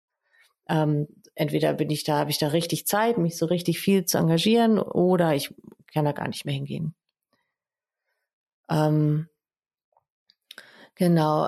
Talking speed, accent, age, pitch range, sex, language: 135 wpm, German, 30-49, 160-185 Hz, female, German